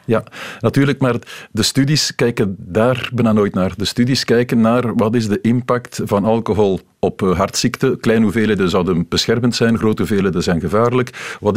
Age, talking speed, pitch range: 50-69, 165 wpm, 105-125 Hz